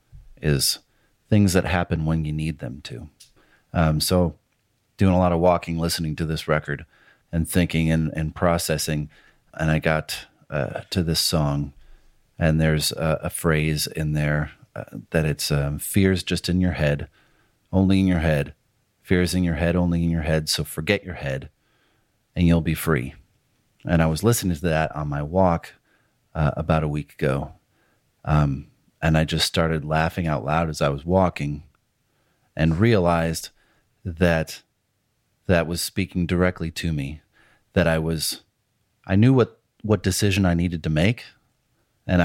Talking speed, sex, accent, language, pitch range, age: 165 wpm, male, American, English, 80-90 Hz, 40-59